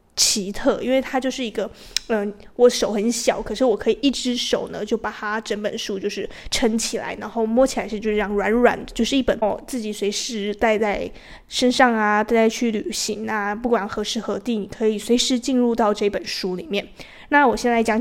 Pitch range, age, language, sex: 210-245 Hz, 20-39, Chinese, female